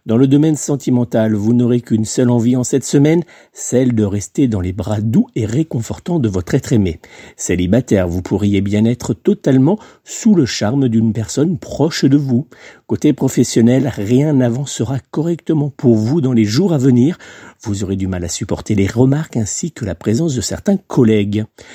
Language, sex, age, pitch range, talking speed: French, male, 50-69, 105-140 Hz, 180 wpm